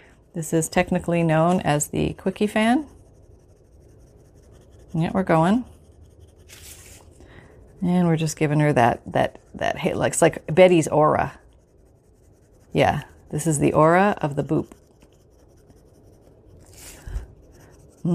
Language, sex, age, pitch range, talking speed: English, female, 40-59, 140-185 Hz, 105 wpm